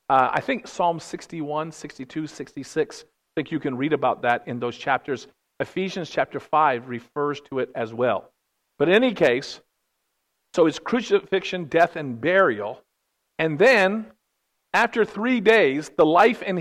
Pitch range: 120-175 Hz